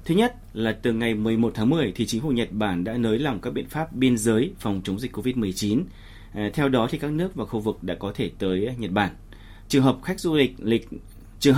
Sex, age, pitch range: male, 30-49, 105-140 Hz